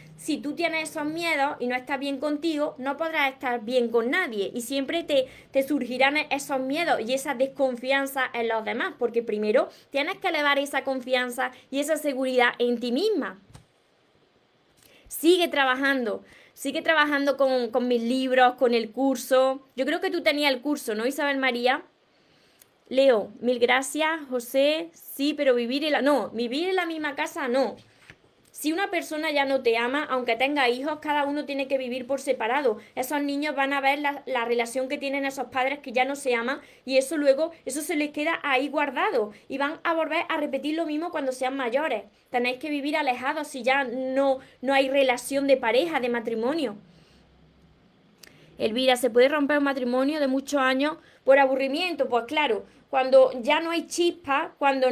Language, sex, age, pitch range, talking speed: Spanish, female, 20-39, 255-300 Hz, 180 wpm